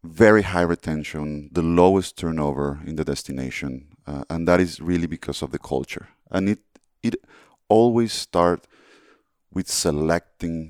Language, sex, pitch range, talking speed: English, male, 75-90 Hz, 140 wpm